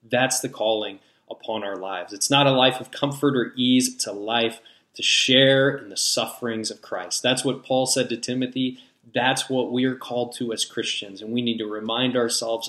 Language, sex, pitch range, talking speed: English, male, 115-135 Hz, 210 wpm